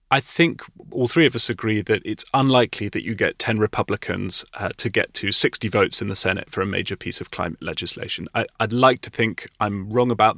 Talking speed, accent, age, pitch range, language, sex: 220 wpm, British, 30-49, 105-125 Hz, English, male